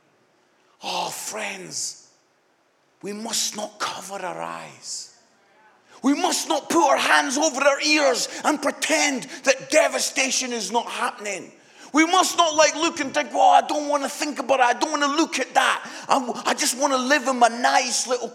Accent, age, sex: British, 40-59, male